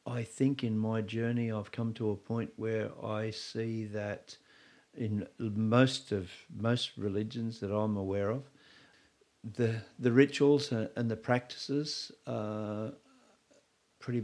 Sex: male